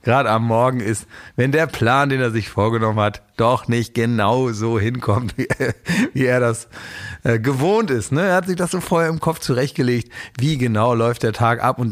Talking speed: 200 wpm